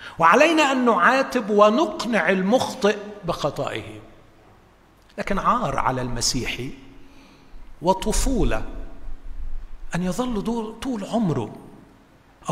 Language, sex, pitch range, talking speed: Arabic, male, 135-225 Hz, 70 wpm